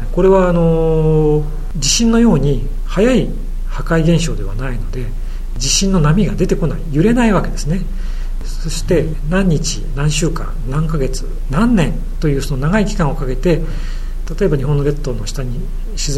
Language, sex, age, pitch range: Japanese, male, 40-59, 135-170 Hz